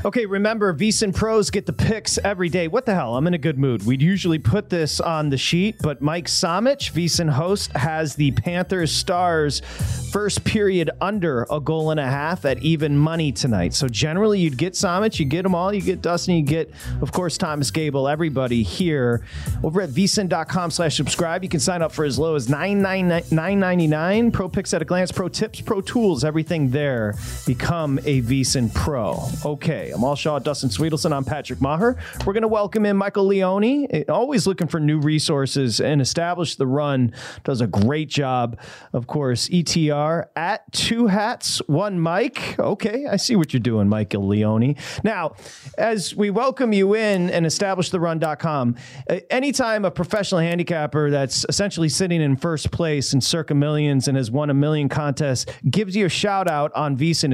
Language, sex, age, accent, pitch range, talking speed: English, male, 40-59, American, 140-190 Hz, 180 wpm